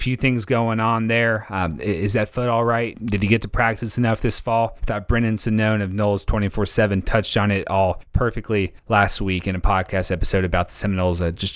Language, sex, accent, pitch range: English, male, American, 90-115 Hz